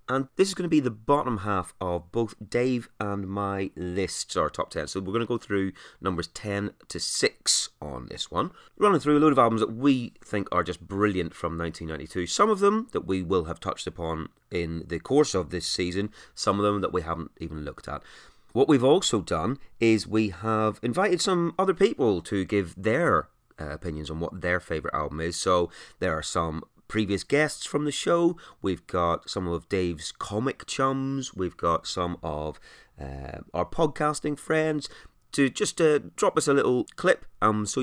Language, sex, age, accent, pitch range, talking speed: English, male, 30-49, British, 85-130 Hz, 200 wpm